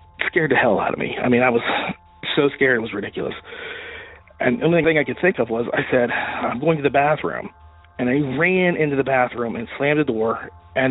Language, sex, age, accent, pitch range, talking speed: English, male, 40-59, American, 115-145 Hz, 230 wpm